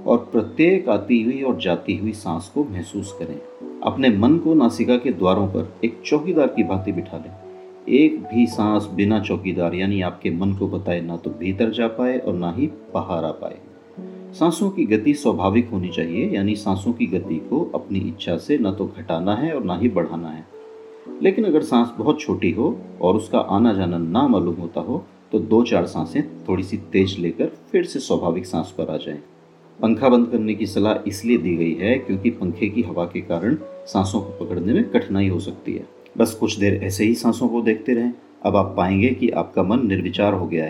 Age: 40-59